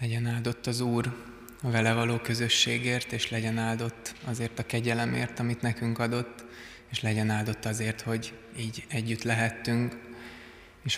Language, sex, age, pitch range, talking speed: Hungarian, male, 20-39, 110-115 Hz, 140 wpm